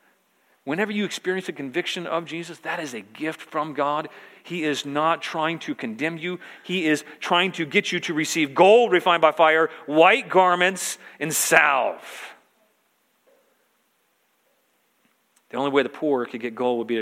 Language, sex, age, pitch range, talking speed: English, male, 40-59, 115-150 Hz, 165 wpm